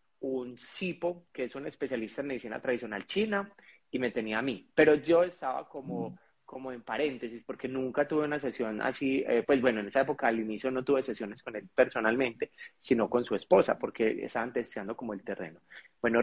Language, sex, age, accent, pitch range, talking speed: Spanish, male, 30-49, Colombian, 115-145 Hz, 195 wpm